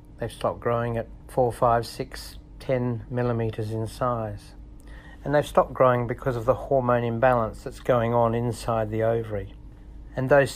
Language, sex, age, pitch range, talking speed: English, male, 60-79, 110-125 Hz, 160 wpm